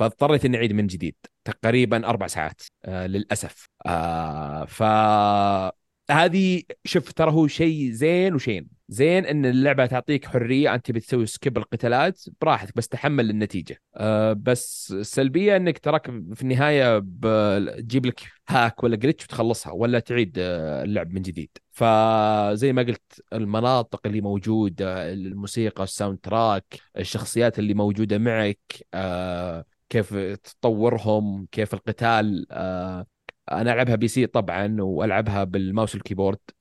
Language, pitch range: Arabic, 95-120 Hz